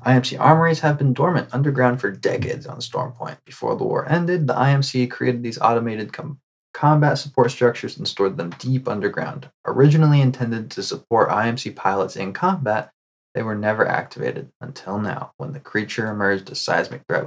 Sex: male